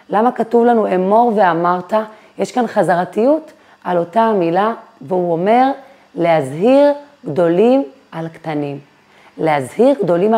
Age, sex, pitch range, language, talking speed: 30-49, female, 180-230 Hz, Hebrew, 110 wpm